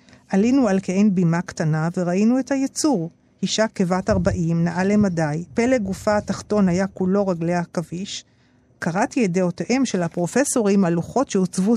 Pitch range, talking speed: 170-230 Hz, 145 wpm